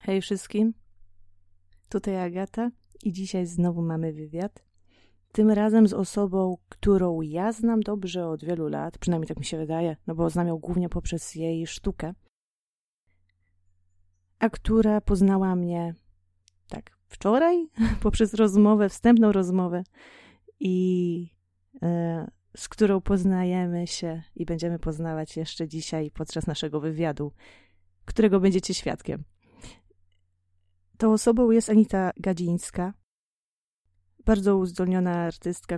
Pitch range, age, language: 155-190 Hz, 30-49, Polish